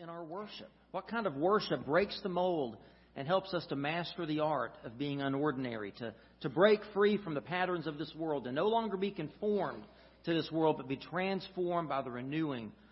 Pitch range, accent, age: 170-225 Hz, American, 40-59